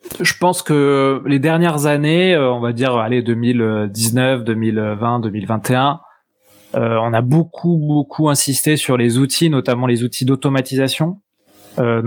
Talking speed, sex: 130 wpm, male